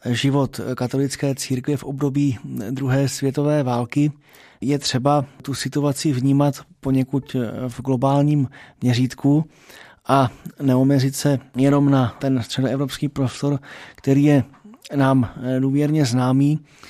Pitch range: 130-145 Hz